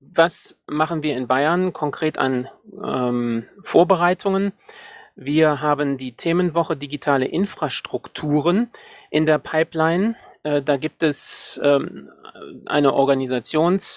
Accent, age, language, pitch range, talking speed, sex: German, 30-49, German, 130-170 Hz, 100 wpm, male